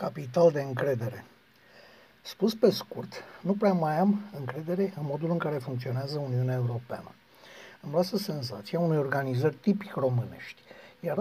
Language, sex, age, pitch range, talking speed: Romanian, male, 60-79, 140-200 Hz, 140 wpm